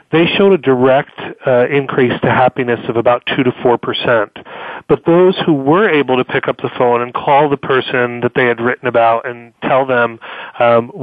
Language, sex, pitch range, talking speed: English, male, 120-140 Hz, 195 wpm